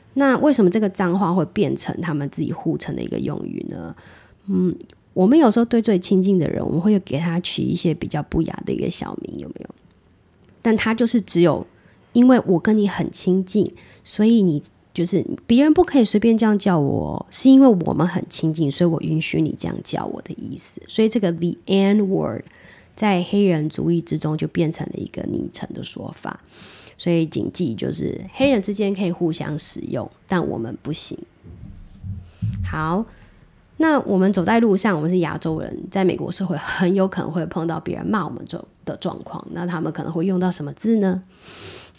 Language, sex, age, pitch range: Chinese, female, 20-39, 155-205 Hz